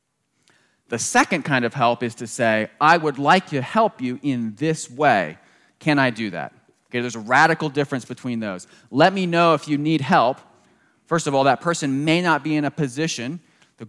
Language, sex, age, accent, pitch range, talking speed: English, male, 30-49, American, 130-160 Hz, 205 wpm